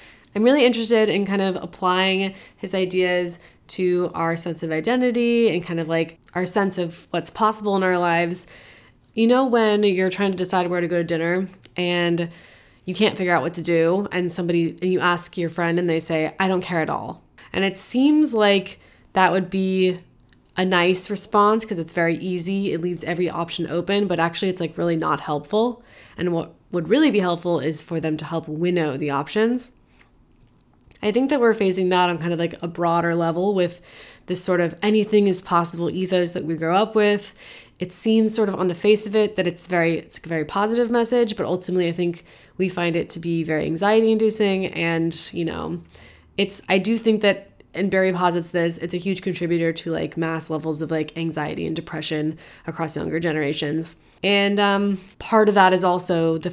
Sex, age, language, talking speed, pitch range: female, 20-39, English, 205 wpm, 170-200 Hz